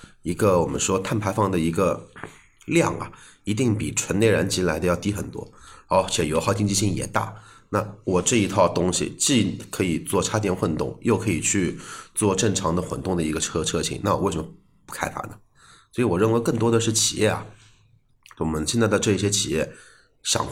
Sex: male